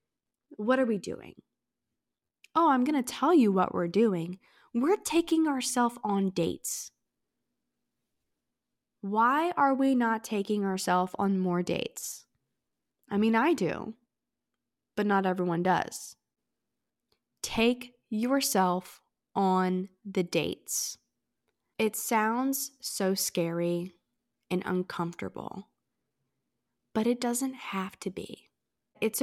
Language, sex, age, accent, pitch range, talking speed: English, female, 20-39, American, 185-245 Hz, 110 wpm